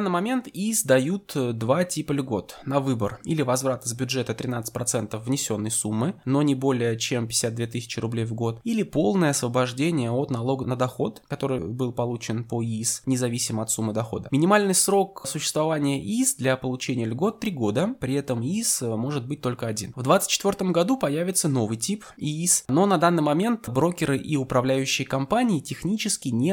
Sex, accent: male, native